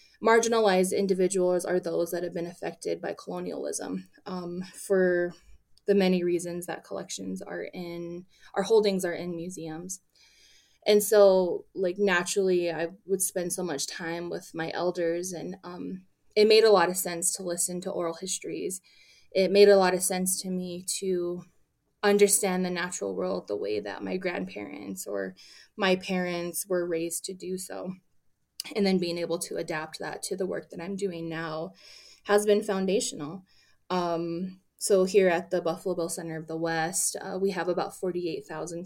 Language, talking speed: English, 170 wpm